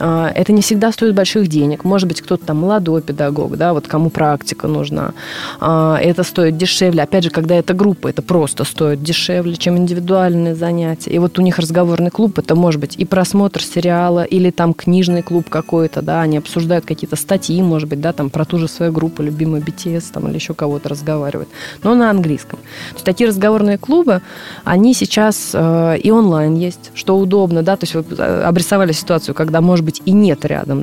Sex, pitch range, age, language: female, 155-195 Hz, 20-39, Russian